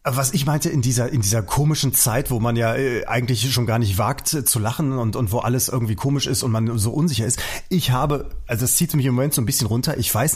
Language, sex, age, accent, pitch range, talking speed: German, male, 30-49, German, 110-140 Hz, 260 wpm